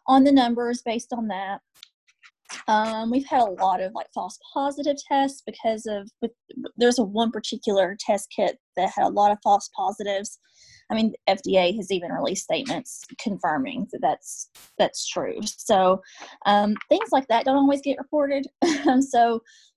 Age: 20-39